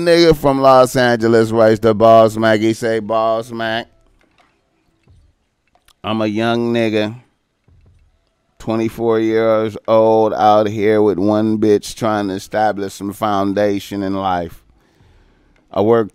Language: English